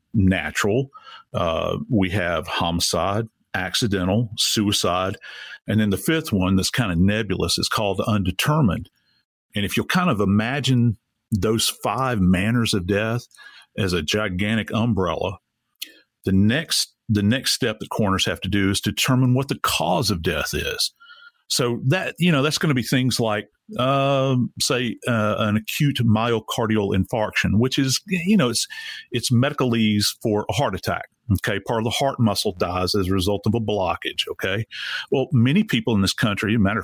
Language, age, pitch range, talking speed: English, 50-69, 100-130 Hz, 170 wpm